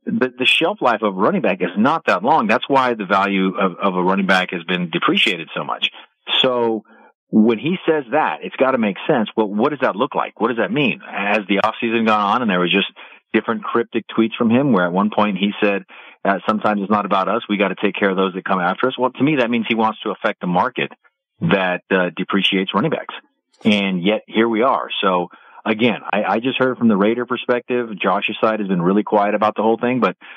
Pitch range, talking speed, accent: 95-120 Hz, 245 wpm, American